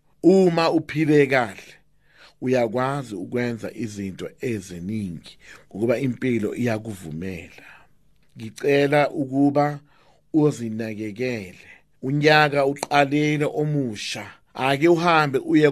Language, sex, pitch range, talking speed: English, male, 120-150 Hz, 75 wpm